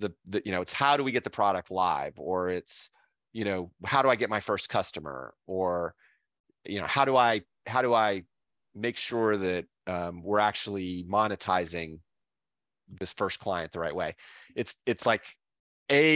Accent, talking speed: American, 180 wpm